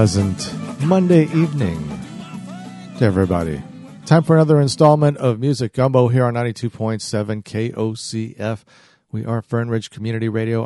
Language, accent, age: English, American, 50-69